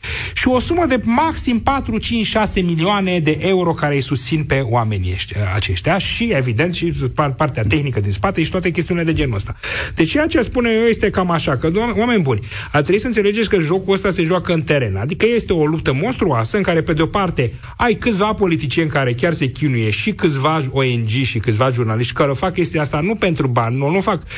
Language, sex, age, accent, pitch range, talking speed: Romanian, male, 40-59, native, 125-195 Hz, 205 wpm